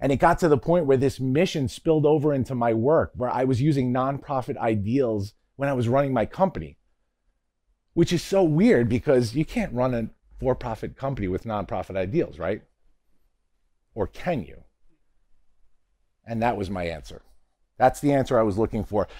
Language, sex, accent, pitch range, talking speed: English, male, American, 105-145 Hz, 180 wpm